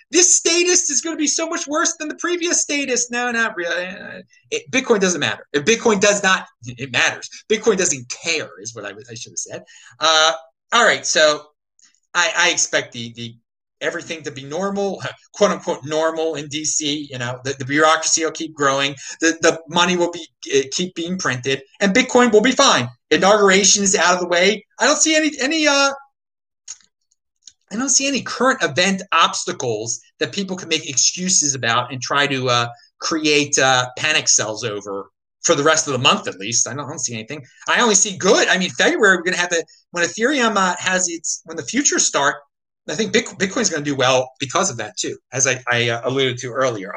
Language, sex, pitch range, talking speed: English, male, 145-225 Hz, 210 wpm